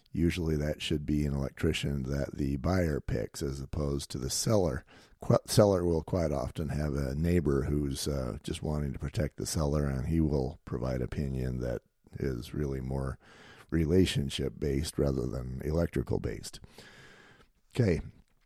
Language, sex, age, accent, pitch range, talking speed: English, male, 50-69, American, 70-90 Hz, 145 wpm